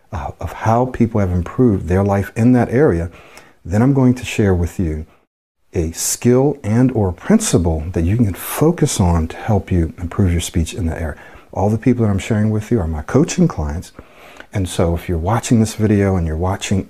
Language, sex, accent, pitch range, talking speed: English, male, American, 85-120 Hz, 205 wpm